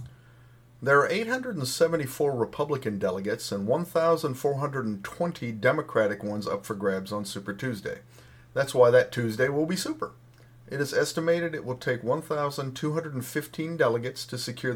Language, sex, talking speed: English, male, 130 wpm